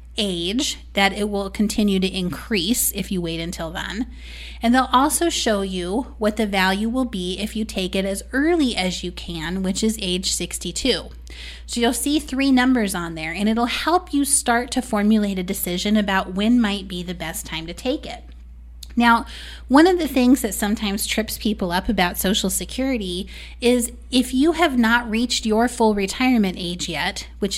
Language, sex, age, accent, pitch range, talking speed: English, female, 30-49, American, 195-255 Hz, 185 wpm